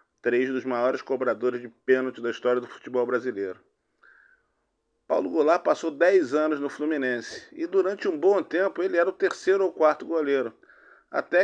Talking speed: 165 wpm